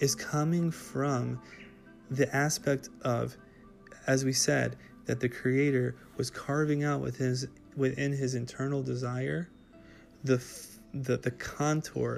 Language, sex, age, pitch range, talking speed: English, male, 20-39, 120-135 Hz, 130 wpm